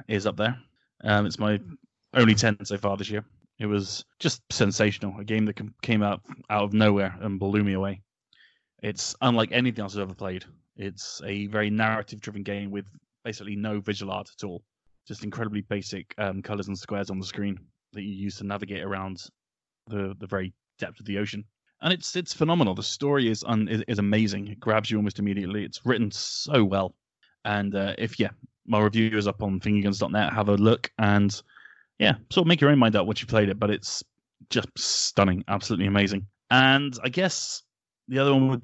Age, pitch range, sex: 20-39, 100-125 Hz, male